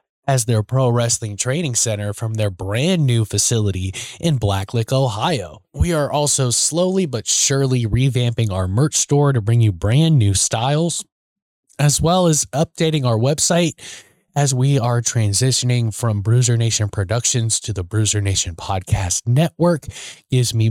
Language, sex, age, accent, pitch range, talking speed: English, male, 20-39, American, 105-135 Hz, 150 wpm